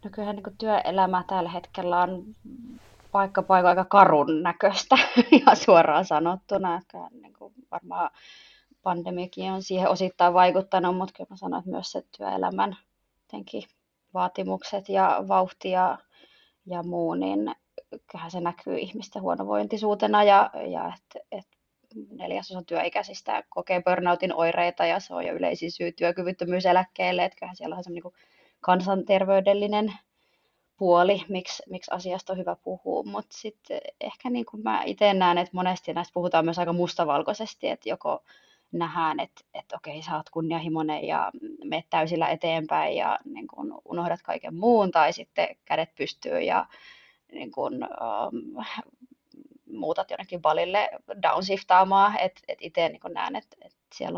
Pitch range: 175-210 Hz